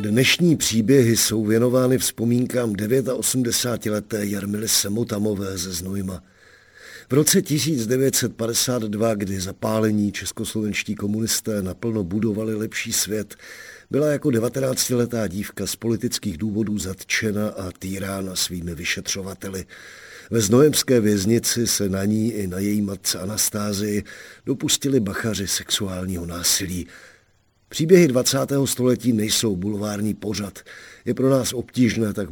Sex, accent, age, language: male, native, 50-69, Czech